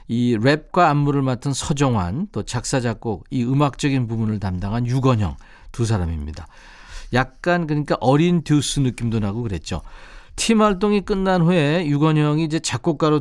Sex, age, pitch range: male, 40-59, 115-160 Hz